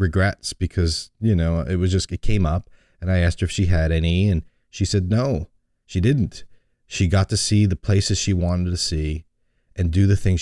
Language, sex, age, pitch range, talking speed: English, male, 30-49, 80-95 Hz, 220 wpm